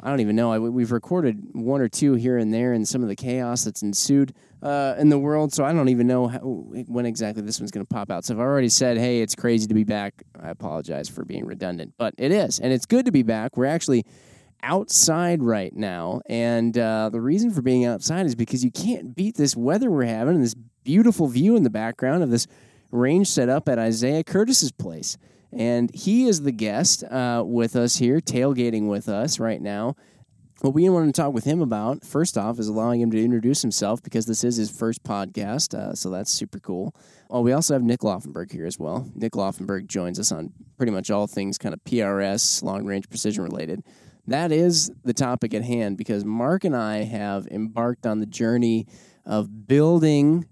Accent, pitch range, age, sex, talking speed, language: American, 115-140 Hz, 20-39, male, 215 wpm, English